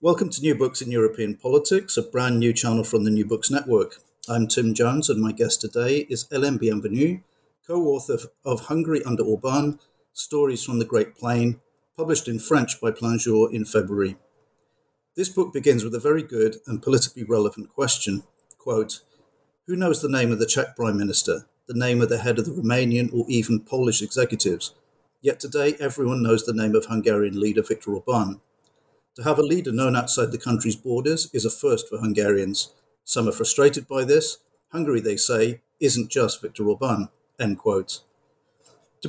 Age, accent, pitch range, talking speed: 50-69, British, 110-150 Hz, 175 wpm